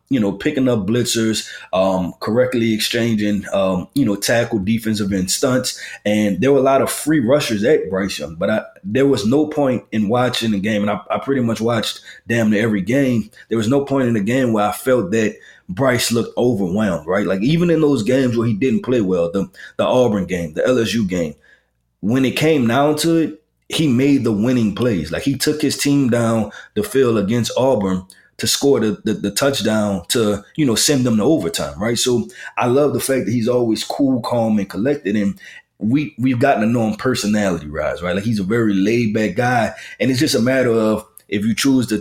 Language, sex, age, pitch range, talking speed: English, male, 20-39, 105-135 Hz, 215 wpm